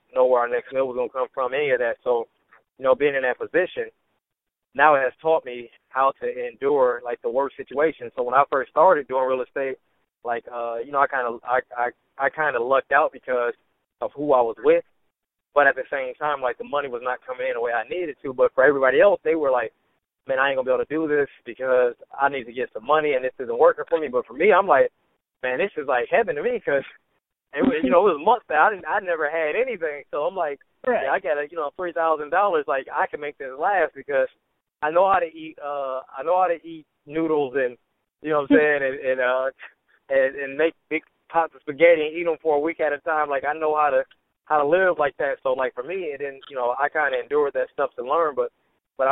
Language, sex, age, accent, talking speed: English, male, 20-39, American, 265 wpm